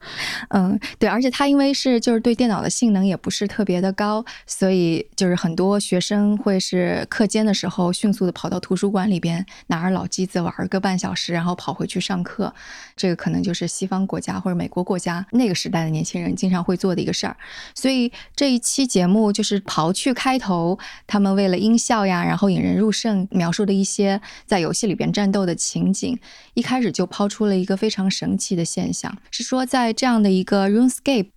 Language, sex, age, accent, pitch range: Chinese, female, 20-39, native, 185-235 Hz